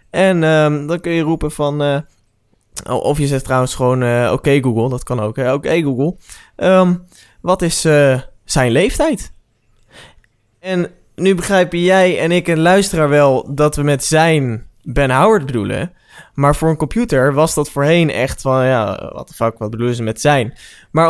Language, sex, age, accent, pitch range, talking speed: Dutch, male, 20-39, Dutch, 120-160 Hz, 170 wpm